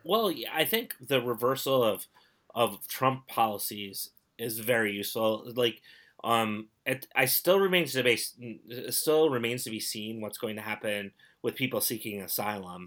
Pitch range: 100-115 Hz